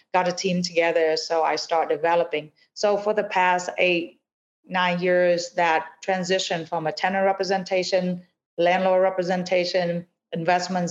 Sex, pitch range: female, 165-190 Hz